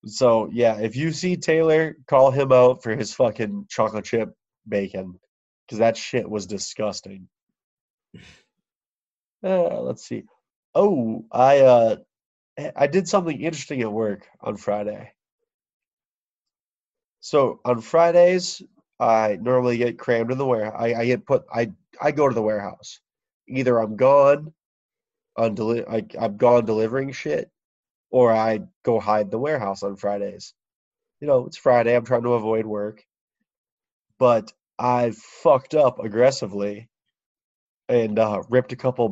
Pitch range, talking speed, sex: 110-155 Hz, 140 wpm, male